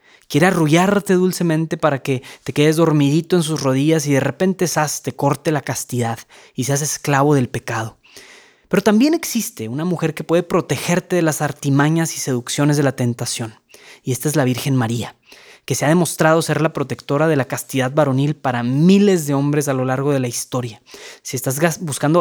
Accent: Mexican